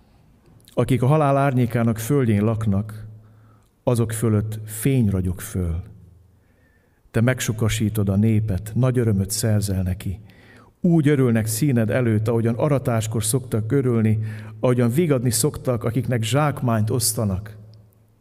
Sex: male